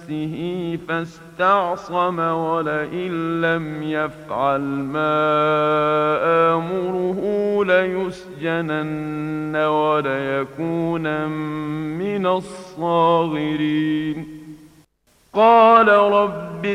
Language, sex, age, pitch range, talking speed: English, male, 50-69, 155-195 Hz, 45 wpm